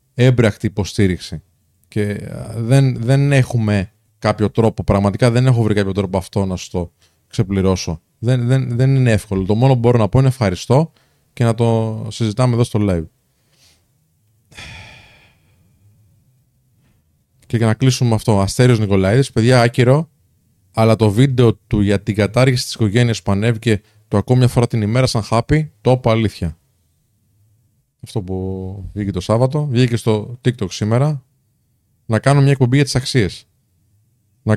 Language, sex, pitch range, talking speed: Greek, male, 105-125 Hz, 145 wpm